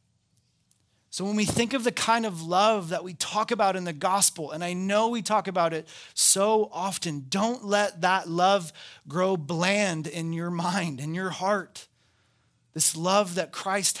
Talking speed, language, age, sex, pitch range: 175 wpm, English, 30-49, male, 145-185 Hz